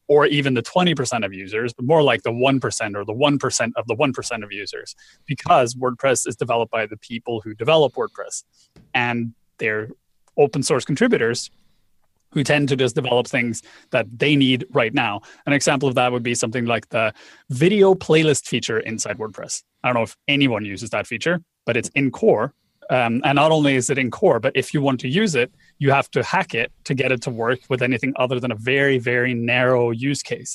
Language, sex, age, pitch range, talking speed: English, male, 30-49, 115-145 Hz, 210 wpm